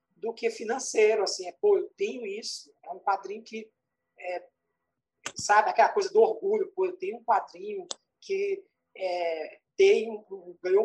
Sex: male